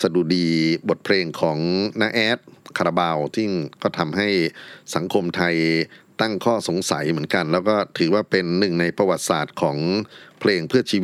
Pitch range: 85-110 Hz